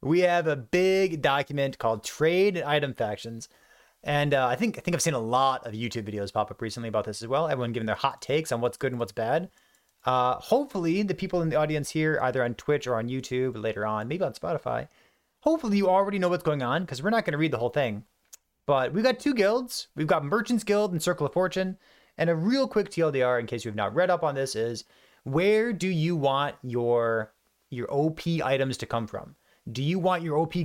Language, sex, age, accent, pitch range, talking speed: English, male, 30-49, American, 125-185 Hz, 235 wpm